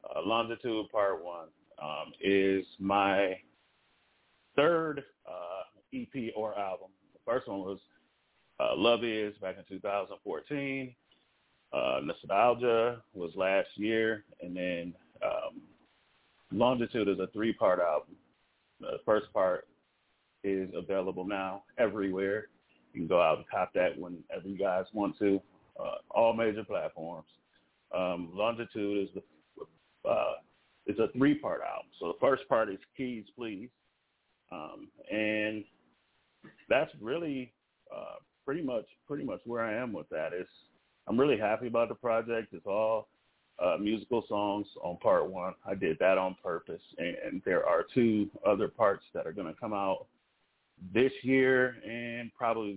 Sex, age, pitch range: male, 30-49, 100-125 Hz